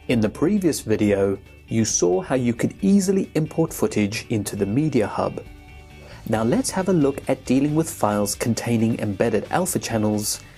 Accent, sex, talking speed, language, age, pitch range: British, male, 165 wpm, English, 30-49, 105-150 Hz